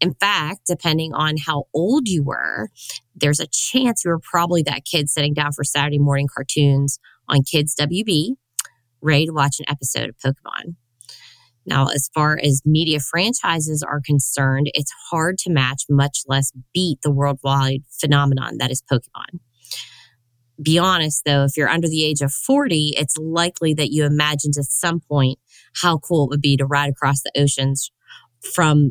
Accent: American